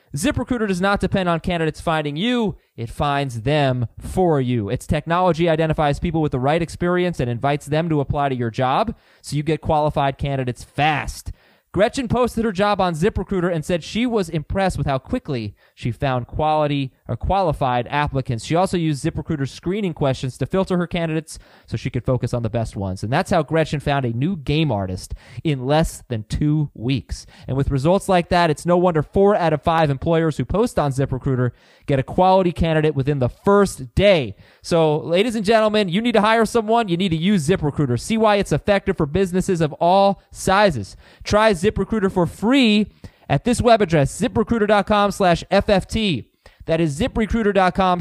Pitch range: 135-190 Hz